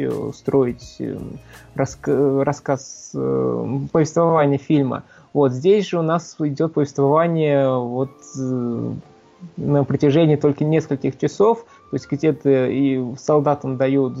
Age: 20-39